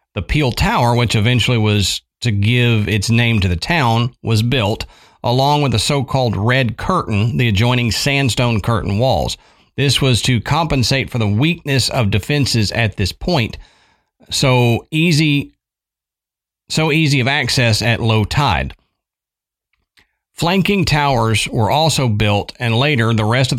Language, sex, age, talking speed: English, male, 40-59, 145 wpm